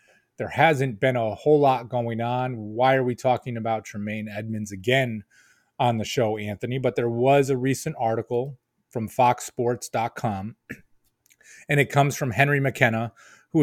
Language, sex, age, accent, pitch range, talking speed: English, male, 30-49, American, 110-135 Hz, 155 wpm